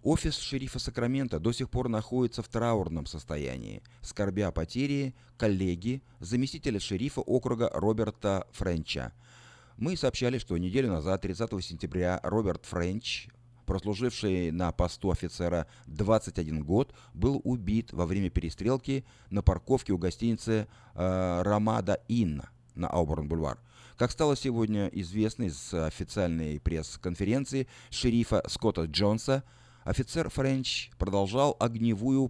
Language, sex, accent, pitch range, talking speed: Russian, male, native, 95-125 Hz, 115 wpm